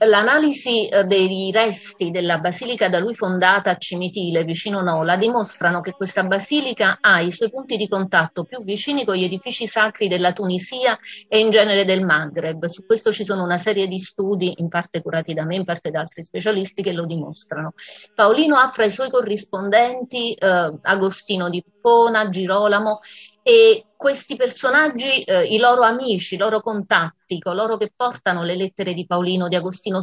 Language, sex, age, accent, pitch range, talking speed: Italian, female, 30-49, native, 185-230 Hz, 170 wpm